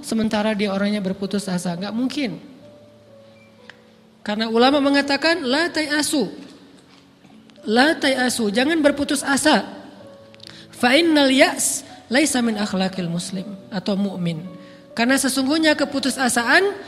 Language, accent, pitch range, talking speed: Indonesian, native, 215-295 Hz, 95 wpm